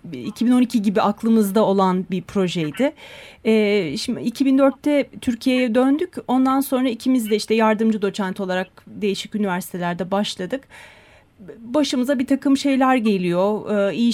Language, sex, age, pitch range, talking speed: Turkish, female, 30-49, 205-250 Hz, 125 wpm